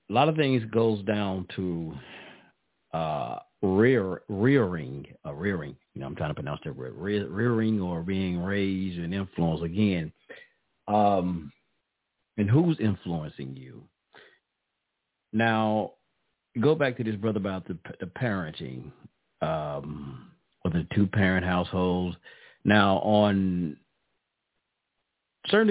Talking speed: 115 wpm